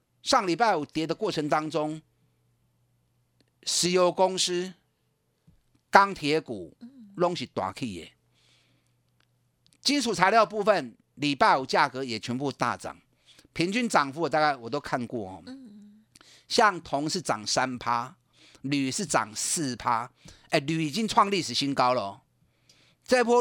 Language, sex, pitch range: Chinese, male, 125-190 Hz